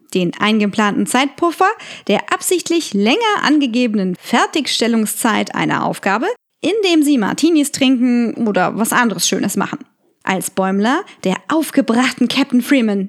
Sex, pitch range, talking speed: female, 215-285 Hz, 115 wpm